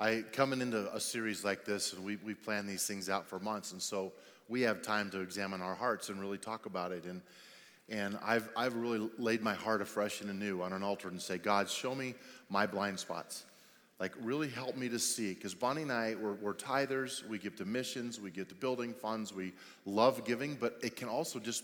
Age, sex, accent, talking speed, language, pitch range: 30-49, male, American, 225 wpm, English, 110-150 Hz